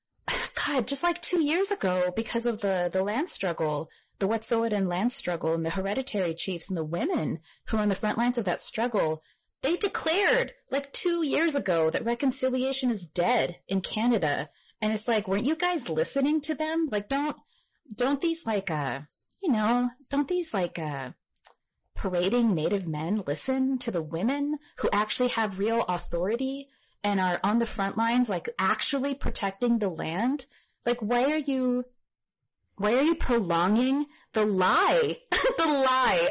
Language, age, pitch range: English, 30-49, 180-265 Hz